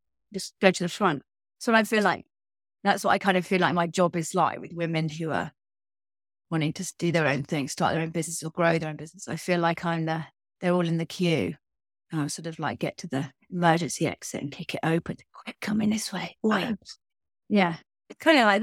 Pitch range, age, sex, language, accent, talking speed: 155-185 Hz, 30-49, female, English, British, 235 wpm